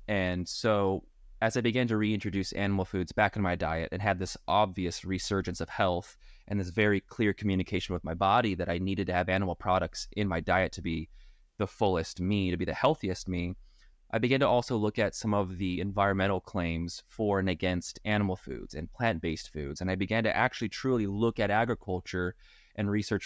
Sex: male